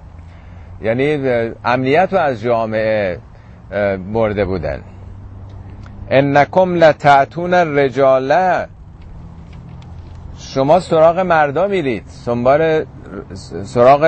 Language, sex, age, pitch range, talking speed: Persian, male, 50-69, 100-150 Hz, 70 wpm